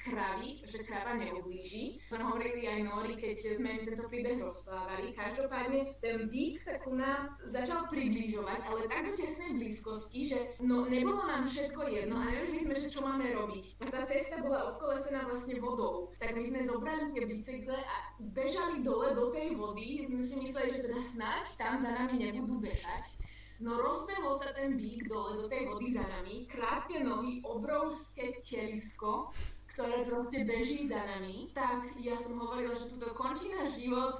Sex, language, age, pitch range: female, Slovak, 20-39, 225-265 Hz